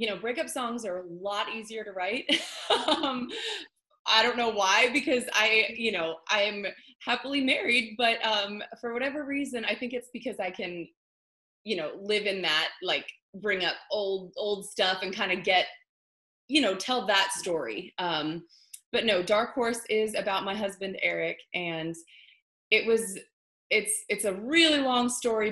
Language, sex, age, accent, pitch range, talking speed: English, female, 20-39, American, 175-230 Hz, 170 wpm